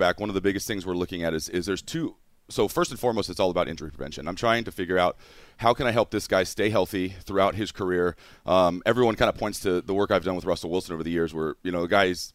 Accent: American